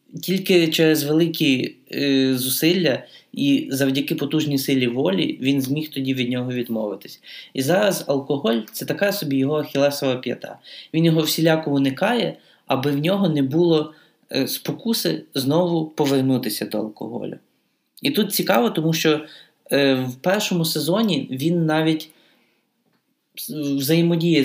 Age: 20-39